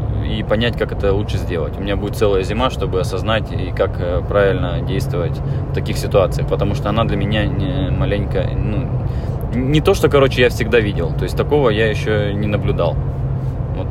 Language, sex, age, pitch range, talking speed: Russian, male, 20-39, 105-120 Hz, 180 wpm